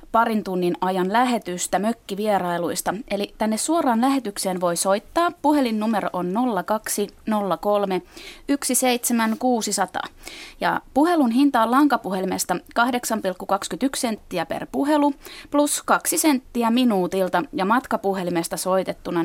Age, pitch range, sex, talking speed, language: 20-39, 185-255 Hz, female, 90 wpm, Finnish